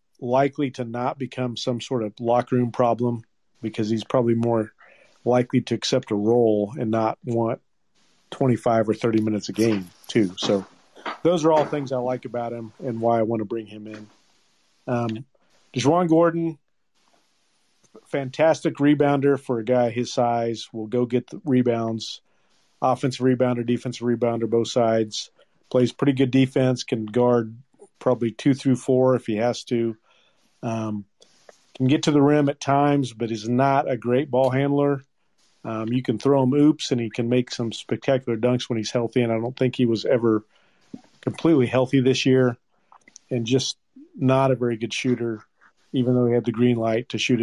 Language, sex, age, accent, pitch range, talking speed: English, male, 40-59, American, 115-130 Hz, 175 wpm